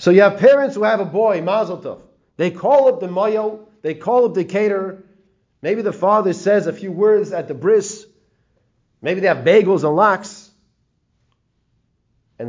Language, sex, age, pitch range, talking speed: English, male, 40-59, 140-200 Hz, 180 wpm